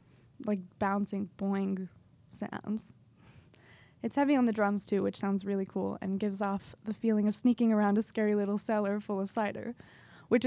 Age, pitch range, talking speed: 20-39, 190-235 Hz, 170 wpm